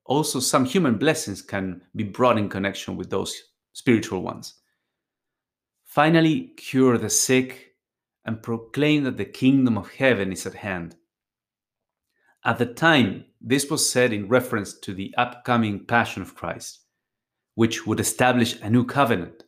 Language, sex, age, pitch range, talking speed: English, male, 30-49, 100-130 Hz, 145 wpm